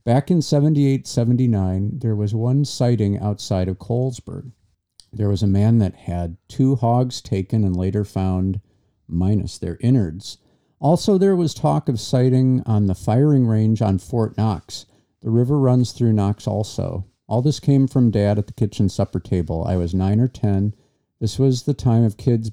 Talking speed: 175 wpm